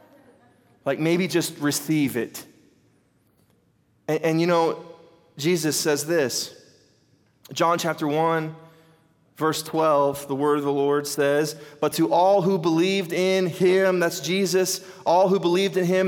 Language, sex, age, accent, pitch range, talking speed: English, male, 30-49, American, 165-195 Hz, 140 wpm